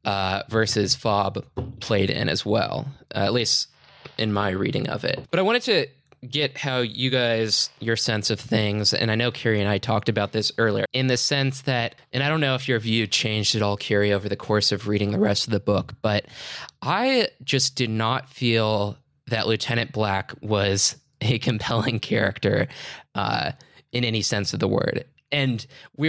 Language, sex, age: English, male, 20-39